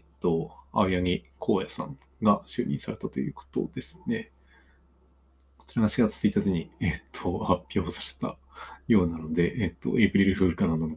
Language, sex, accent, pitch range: Japanese, male, native, 65-105 Hz